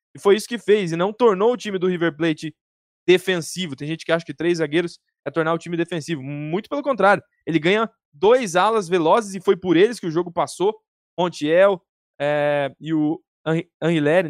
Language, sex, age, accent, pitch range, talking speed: Portuguese, male, 10-29, Brazilian, 150-205 Hz, 200 wpm